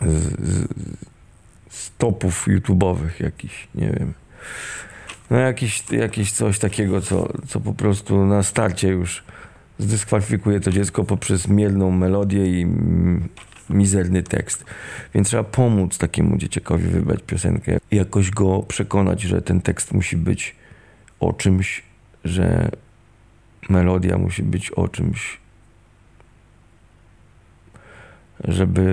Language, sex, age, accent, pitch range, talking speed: Polish, male, 40-59, native, 95-110 Hz, 110 wpm